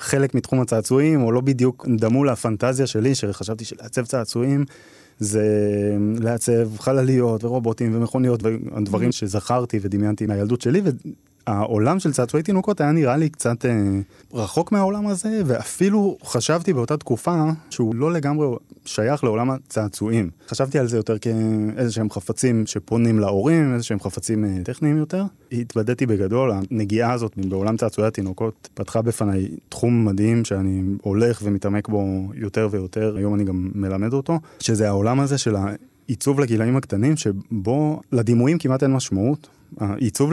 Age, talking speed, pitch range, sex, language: 20-39, 135 wpm, 105-130 Hz, male, Hebrew